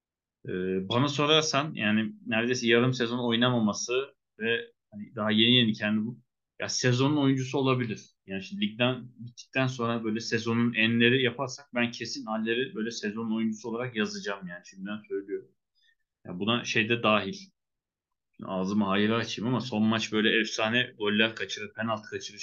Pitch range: 110-135 Hz